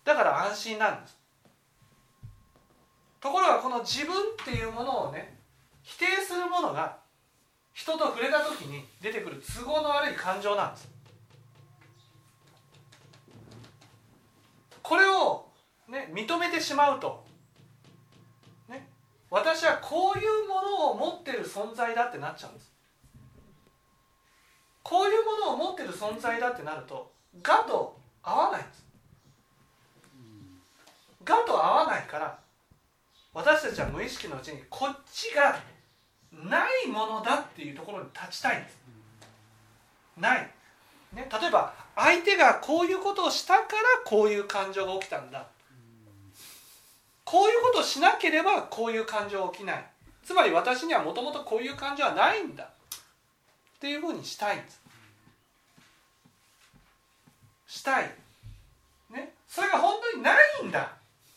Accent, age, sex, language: native, 40-59, male, Japanese